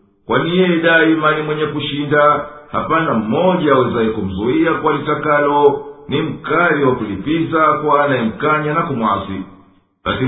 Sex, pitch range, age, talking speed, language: male, 115-160 Hz, 50-69, 115 wpm, Swahili